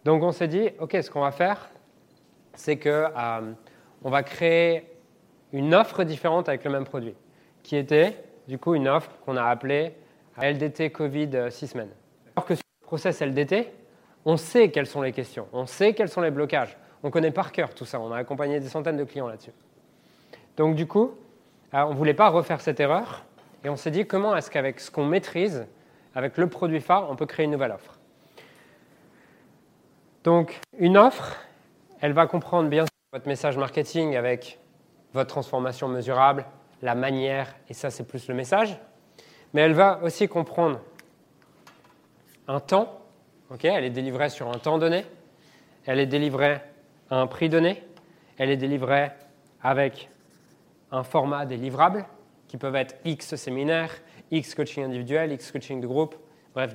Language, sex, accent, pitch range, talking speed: French, male, French, 135-165 Hz, 170 wpm